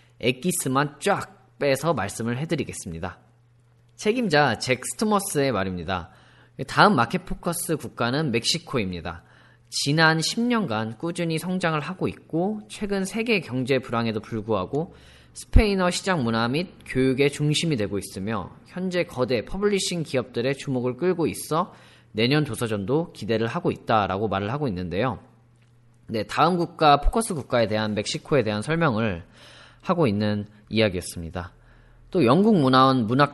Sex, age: male, 10-29